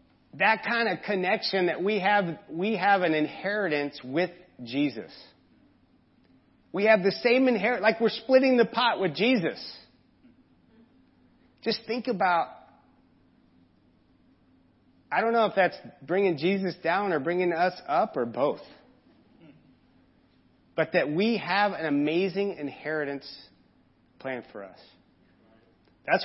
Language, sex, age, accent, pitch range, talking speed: English, male, 30-49, American, 150-210 Hz, 120 wpm